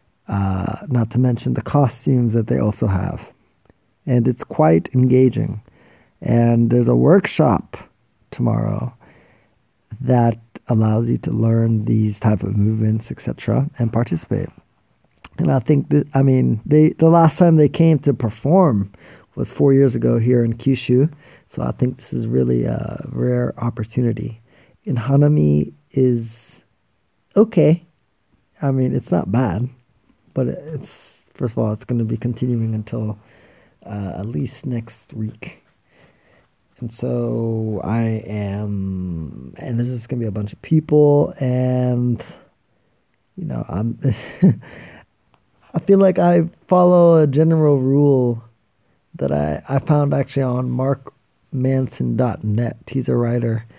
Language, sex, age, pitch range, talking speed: English, male, 40-59, 105-135 Hz, 135 wpm